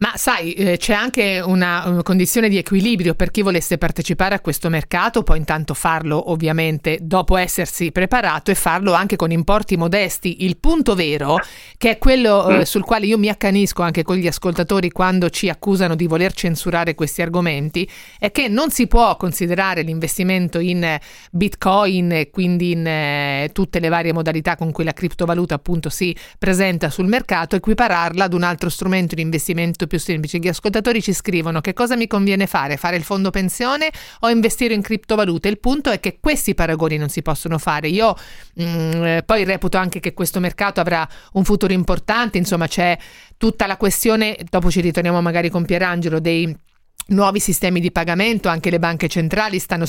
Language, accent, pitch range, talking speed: Italian, native, 170-205 Hz, 180 wpm